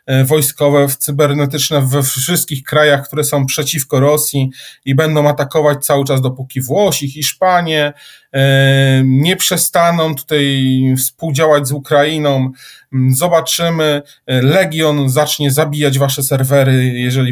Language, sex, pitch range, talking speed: Polish, male, 145-185 Hz, 105 wpm